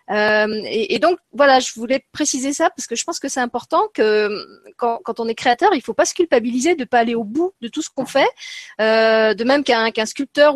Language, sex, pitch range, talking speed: French, female, 215-290 Hz, 255 wpm